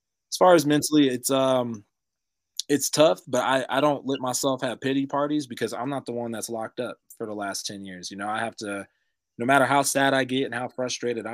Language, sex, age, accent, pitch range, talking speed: English, male, 20-39, American, 100-125 Hz, 235 wpm